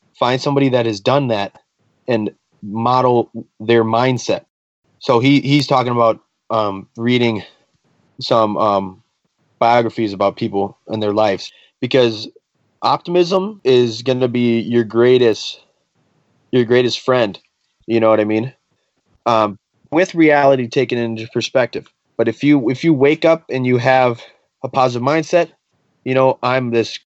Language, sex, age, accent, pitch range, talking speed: English, male, 30-49, American, 115-145 Hz, 140 wpm